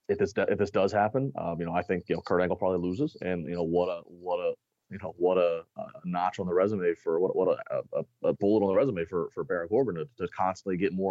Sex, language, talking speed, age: male, English, 285 wpm, 30-49